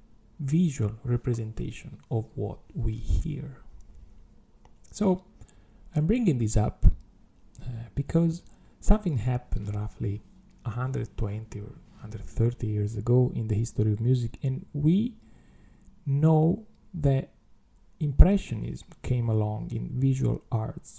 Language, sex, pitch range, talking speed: English, male, 110-150 Hz, 105 wpm